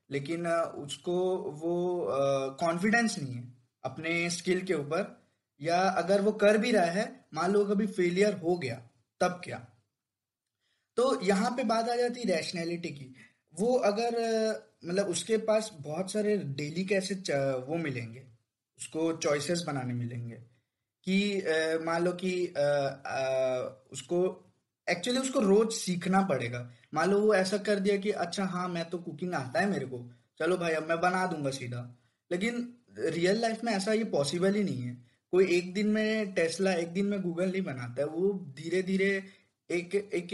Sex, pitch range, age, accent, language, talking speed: male, 145-205 Hz, 20-39, native, Hindi, 160 wpm